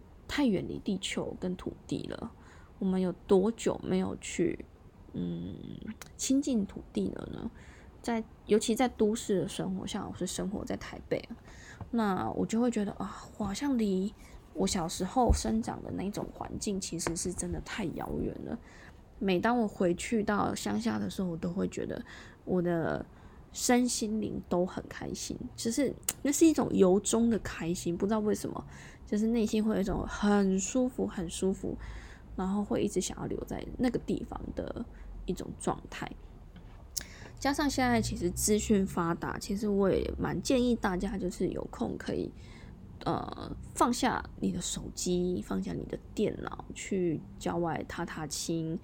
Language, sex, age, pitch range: Chinese, female, 20-39, 175-220 Hz